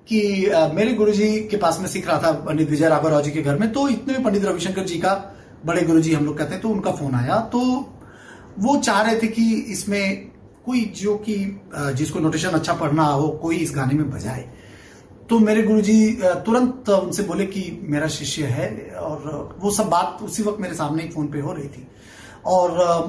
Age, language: 30-49, Hindi